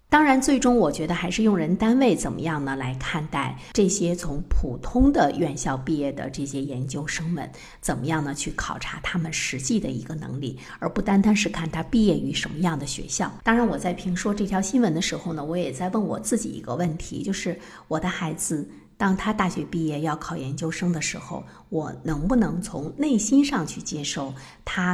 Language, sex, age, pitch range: Chinese, female, 50-69, 155-200 Hz